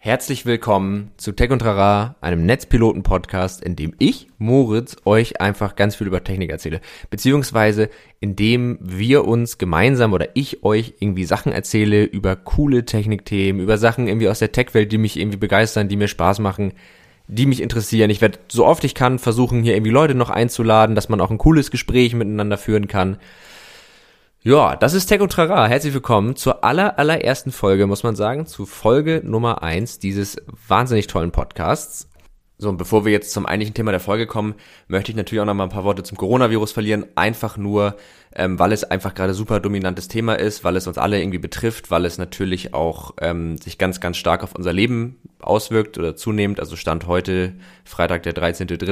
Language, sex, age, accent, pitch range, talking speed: German, male, 20-39, German, 95-115 Hz, 190 wpm